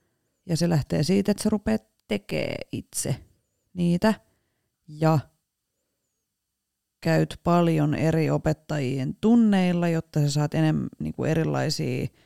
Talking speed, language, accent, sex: 110 wpm, Finnish, native, female